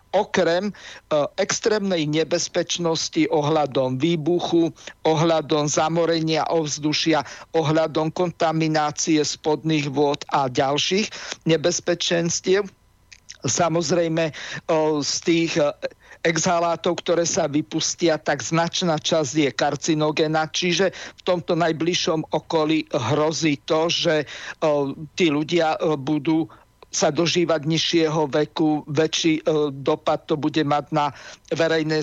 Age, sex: 50-69, male